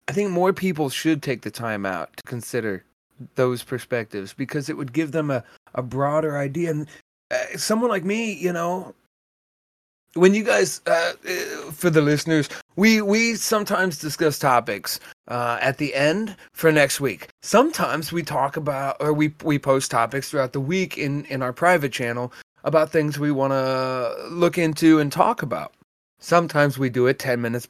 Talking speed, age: 175 wpm, 30-49